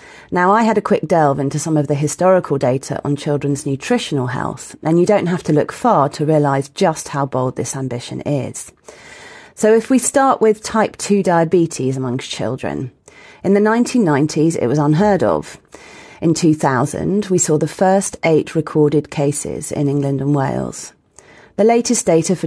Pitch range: 140-175 Hz